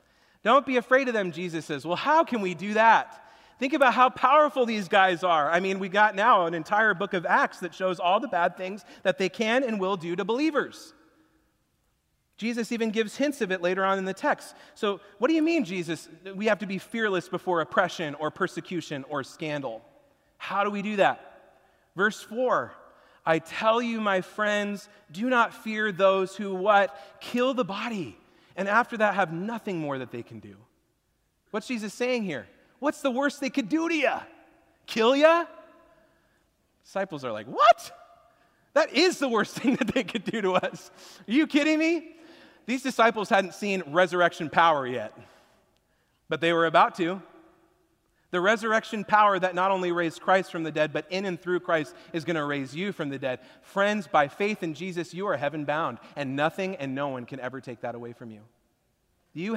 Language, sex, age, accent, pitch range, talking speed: English, male, 30-49, American, 175-230 Hz, 195 wpm